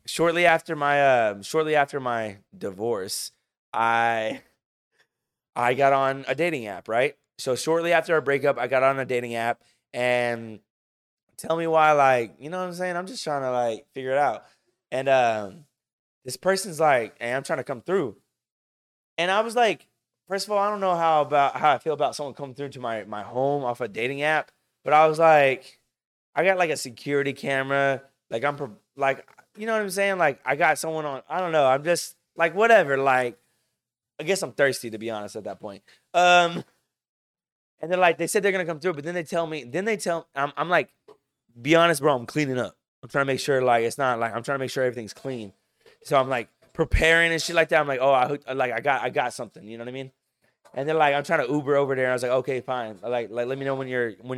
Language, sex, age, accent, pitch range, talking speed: English, male, 20-39, American, 125-165 Hz, 235 wpm